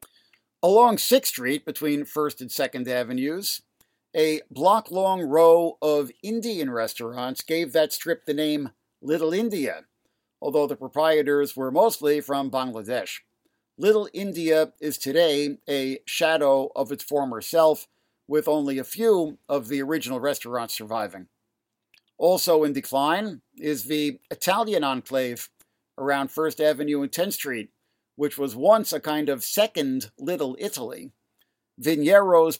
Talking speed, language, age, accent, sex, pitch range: 130 wpm, English, 50-69, American, male, 135-165 Hz